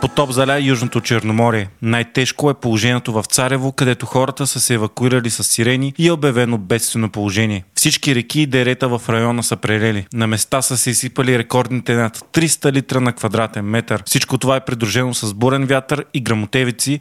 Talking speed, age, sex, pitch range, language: 180 wpm, 20-39, male, 115-135 Hz, Bulgarian